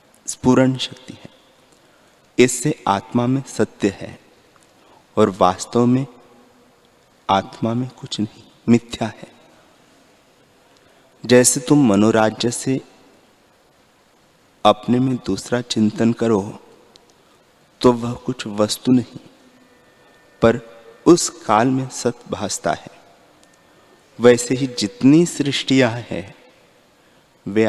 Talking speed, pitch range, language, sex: 95 wpm, 100-125 Hz, Hindi, male